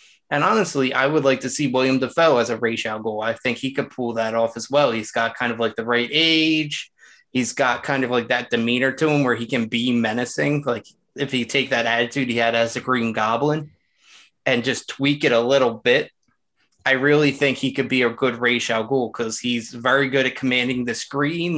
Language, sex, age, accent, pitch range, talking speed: English, male, 20-39, American, 115-140 Hz, 225 wpm